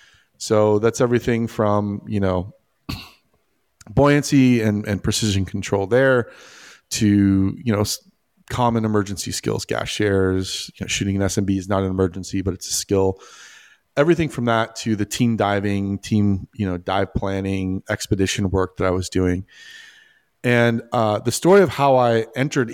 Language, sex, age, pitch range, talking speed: English, male, 30-49, 100-125 Hz, 150 wpm